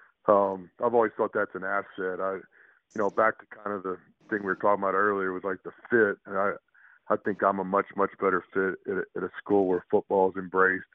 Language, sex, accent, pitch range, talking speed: English, male, American, 95-105 Hz, 235 wpm